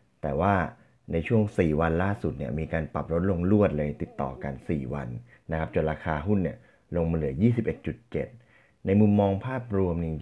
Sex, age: male, 20-39